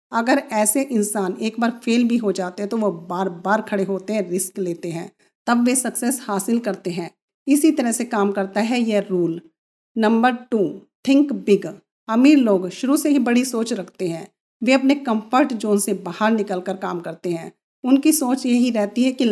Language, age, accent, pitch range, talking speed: Hindi, 50-69, native, 195-240 Hz, 195 wpm